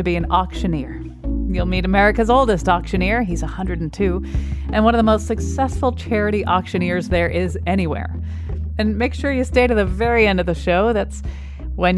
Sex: female